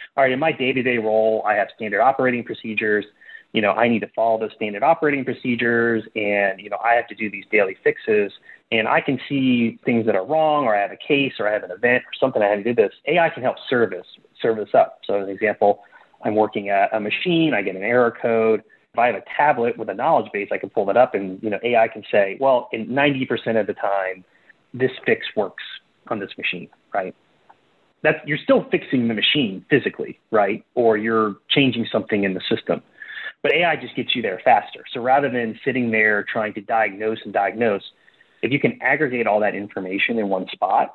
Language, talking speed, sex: English, 220 wpm, male